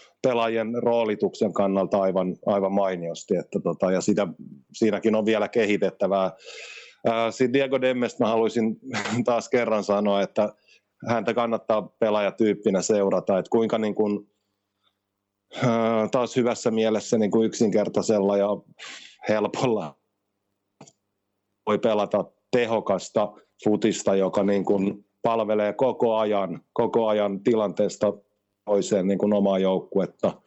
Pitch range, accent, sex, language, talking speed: 100-115 Hz, native, male, Finnish, 110 wpm